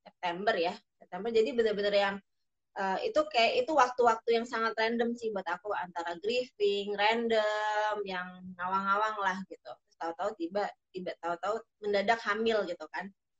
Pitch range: 195-245 Hz